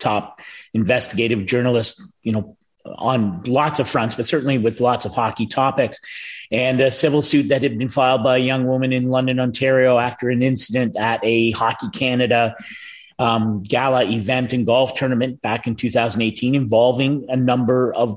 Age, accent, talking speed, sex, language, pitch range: 30-49, American, 170 wpm, male, English, 115-135 Hz